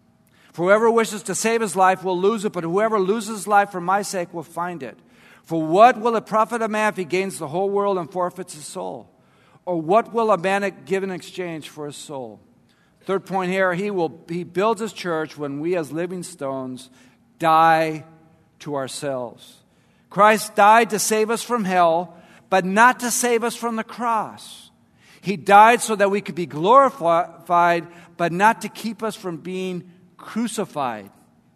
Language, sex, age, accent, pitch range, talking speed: English, male, 50-69, American, 165-210 Hz, 185 wpm